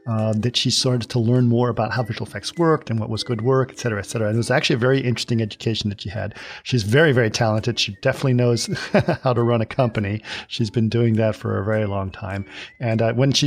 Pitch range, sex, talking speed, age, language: 110-130 Hz, male, 255 wpm, 40-59, English